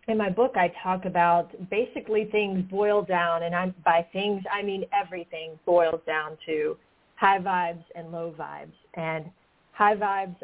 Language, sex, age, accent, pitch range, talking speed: English, female, 30-49, American, 170-205 Hz, 155 wpm